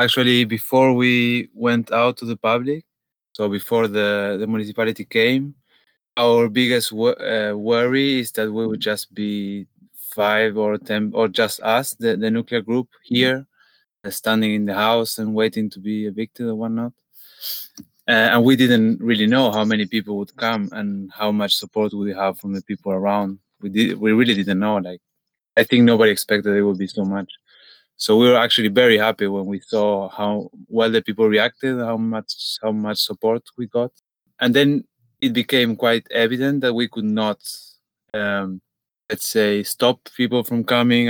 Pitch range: 105-120 Hz